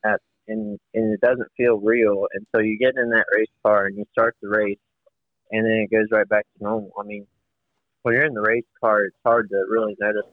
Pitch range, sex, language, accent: 100-115 Hz, male, English, American